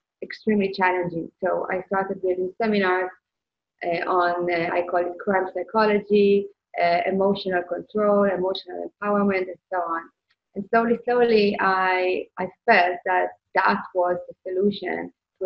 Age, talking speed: 20-39, 135 wpm